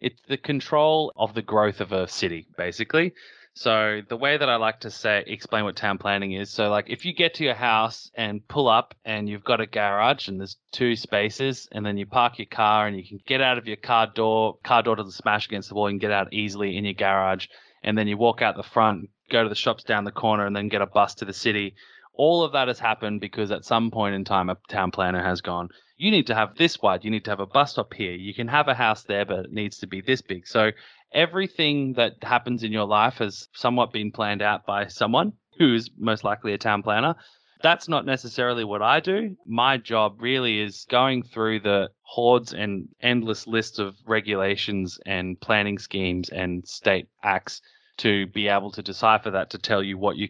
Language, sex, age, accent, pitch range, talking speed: English, male, 20-39, Australian, 100-120 Hz, 235 wpm